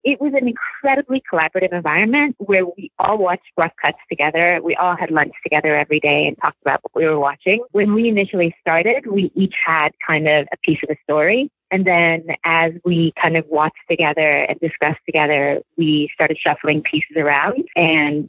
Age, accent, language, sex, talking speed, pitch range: 30-49, American, English, female, 190 wpm, 155-195 Hz